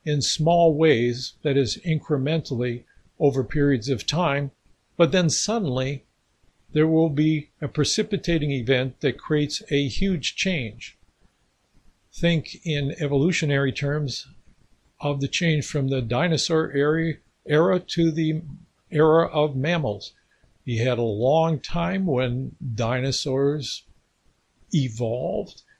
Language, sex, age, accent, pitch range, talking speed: English, male, 60-79, American, 125-160 Hz, 110 wpm